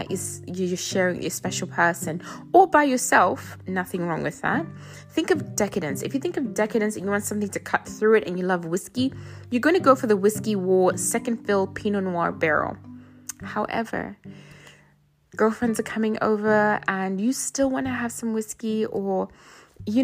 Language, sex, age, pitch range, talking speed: English, female, 20-39, 185-230 Hz, 190 wpm